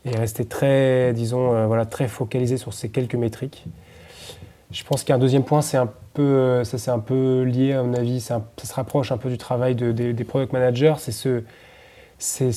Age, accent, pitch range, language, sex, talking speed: 20-39, French, 120-135 Hz, French, male, 220 wpm